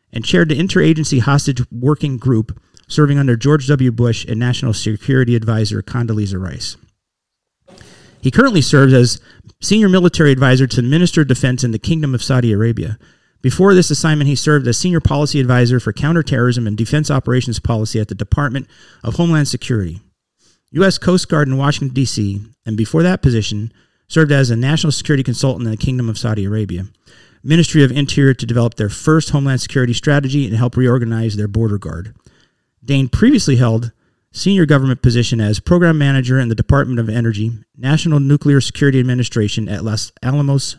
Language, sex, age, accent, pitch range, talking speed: English, male, 40-59, American, 115-145 Hz, 170 wpm